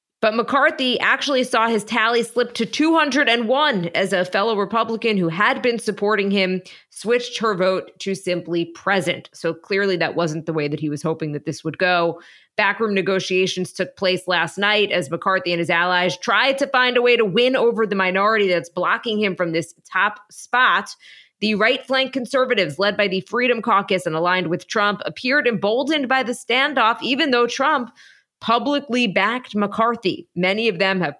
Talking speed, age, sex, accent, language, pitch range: 180 wpm, 20-39, female, American, English, 175-230 Hz